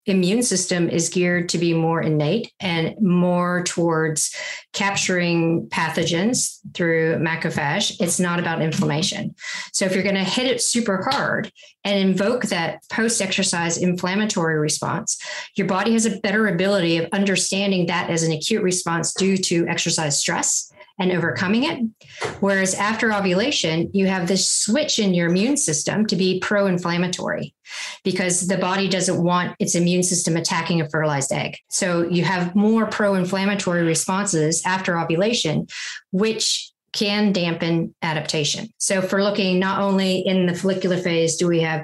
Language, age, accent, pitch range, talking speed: English, 40-59, American, 170-200 Hz, 150 wpm